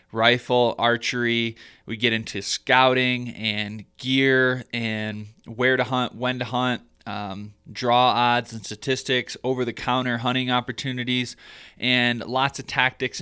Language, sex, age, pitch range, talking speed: English, male, 20-39, 115-135 Hz, 125 wpm